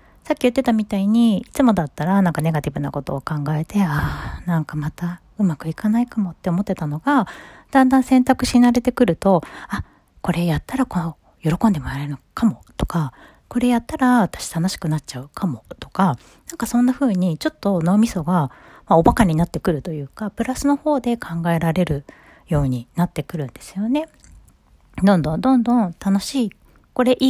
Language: Japanese